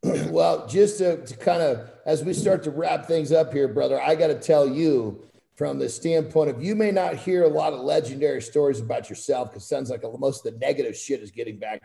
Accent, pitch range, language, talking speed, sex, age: American, 140-220 Hz, English, 240 wpm, male, 50-69